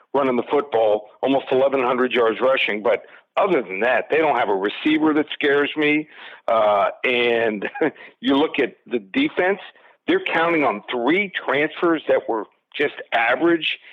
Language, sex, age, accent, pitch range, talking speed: English, male, 50-69, American, 120-145 Hz, 150 wpm